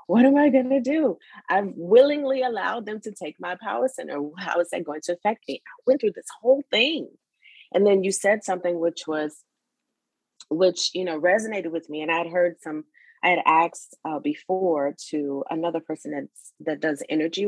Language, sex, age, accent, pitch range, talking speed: English, female, 30-49, American, 145-190 Hz, 195 wpm